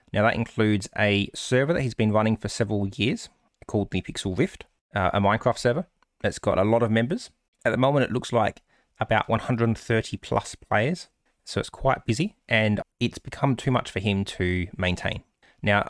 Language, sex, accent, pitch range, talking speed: English, male, Australian, 100-125 Hz, 185 wpm